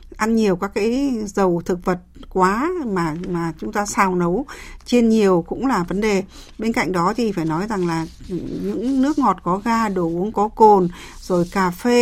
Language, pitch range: Vietnamese, 175-220 Hz